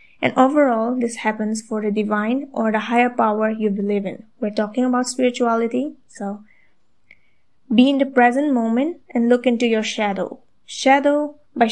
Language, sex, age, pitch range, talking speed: English, female, 20-39, 220-255 Hz, 160 wpm